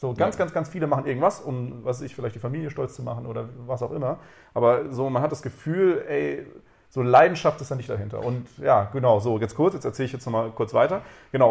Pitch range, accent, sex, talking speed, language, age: 115-140 Hz, German, male, 250 wpm, German, 30-49